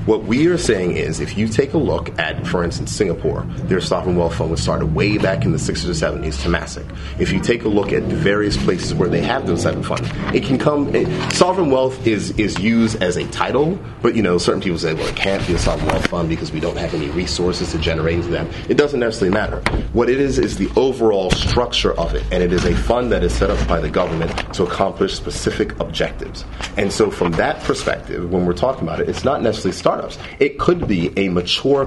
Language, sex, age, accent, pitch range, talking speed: English, male, 30-49, American, 85-110 Hz, 245 wpm